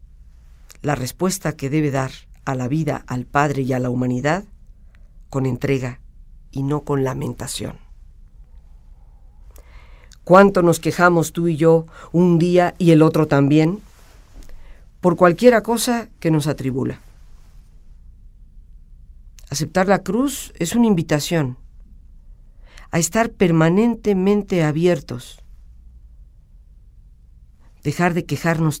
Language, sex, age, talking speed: Spanish, female, 50-69, 105 wpm